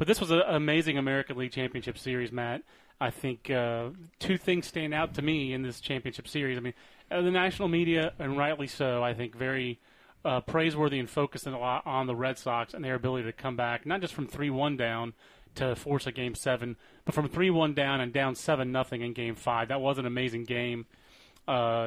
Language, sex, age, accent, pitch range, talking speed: English, male, 30-49, American, 125-155 Hz, 205 wpm